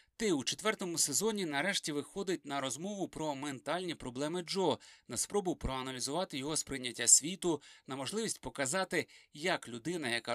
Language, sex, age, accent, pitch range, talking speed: Ukrainian, male, 30-49, native, 130-190 Hz, 140 wpm